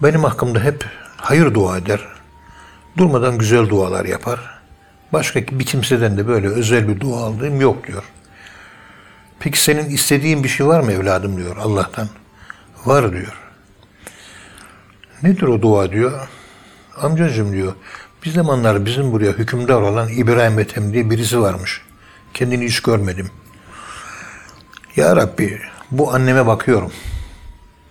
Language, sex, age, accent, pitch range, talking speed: Turkish, male, 60-79, native, 100-125 Hz, 125 wpm